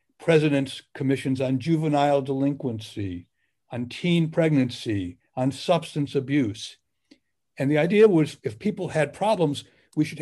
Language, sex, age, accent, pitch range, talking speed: English, male, 60-79, American, 125-165 Hz, 125 wpm